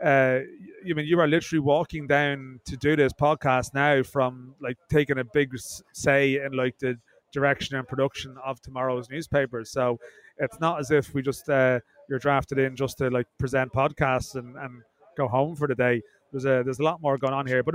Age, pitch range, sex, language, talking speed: 30-49, 130-145 Hz, male, English, 205 wpm